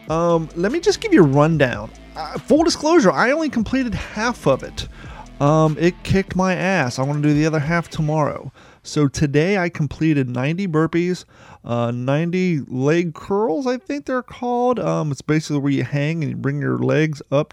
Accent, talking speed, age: American, 190 wpm, 30-49